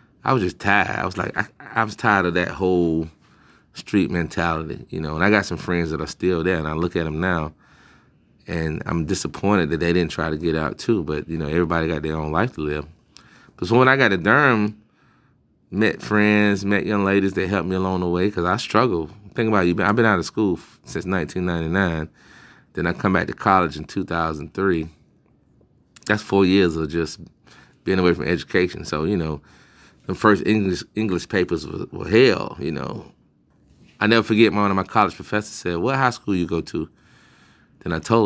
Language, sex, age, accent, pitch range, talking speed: English, male, 30-49, American, 85-105 Hz, 210 wpm